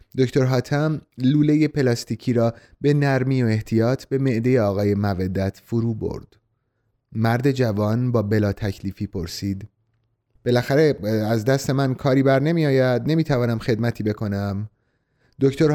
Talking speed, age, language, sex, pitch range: 125 wpm, 30-49, Persian, male, 110-135 Hz